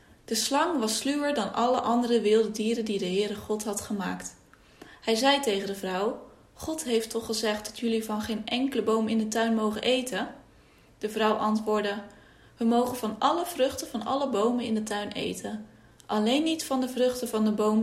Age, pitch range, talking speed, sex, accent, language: 20-39, 205-250 Hz, 195 wpm, female, Dutch, English